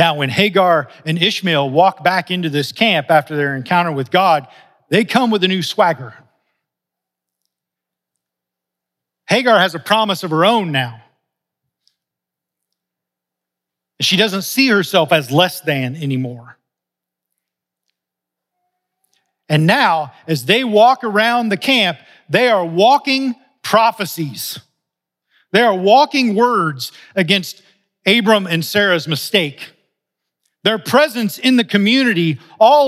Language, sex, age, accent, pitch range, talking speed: English, male, 40-59, American, 145-225 Hz, 115 wpm